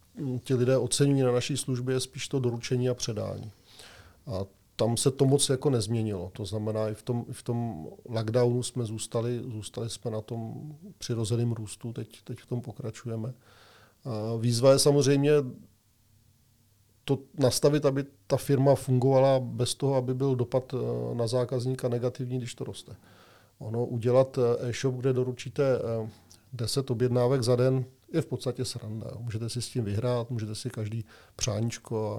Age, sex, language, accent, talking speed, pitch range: 40-59, male, Czech, native, 145 wpm, 110-125 Hz